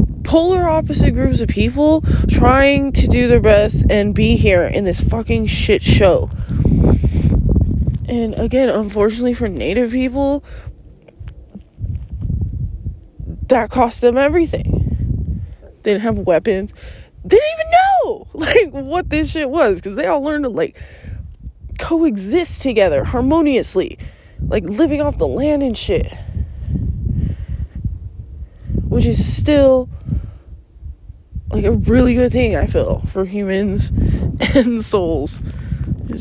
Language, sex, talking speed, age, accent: English, female, 120 wpm, 20-39, American